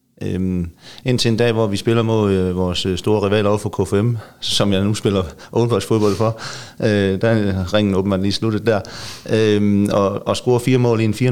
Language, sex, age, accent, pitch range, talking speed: Danish, male, 30-49, native, 95-110 Hz, 195 wpm